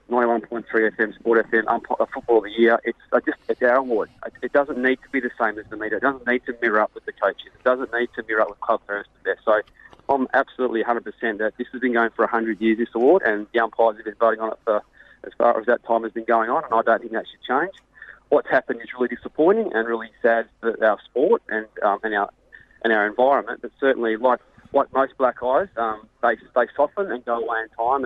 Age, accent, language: 30-49, Australian, English